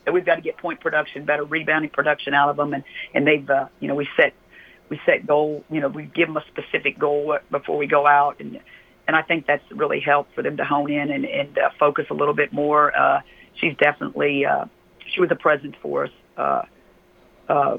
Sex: female